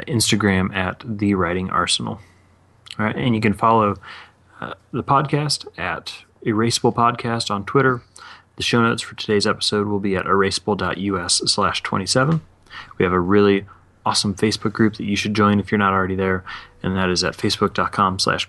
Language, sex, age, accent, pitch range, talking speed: English, male, 30-49, American, 95-110 Hz, 170 wpm